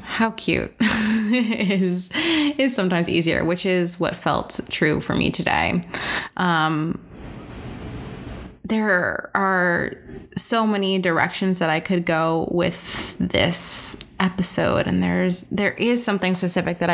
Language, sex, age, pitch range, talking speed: English, female, 20-39, 170-200 Hz, 120 wpm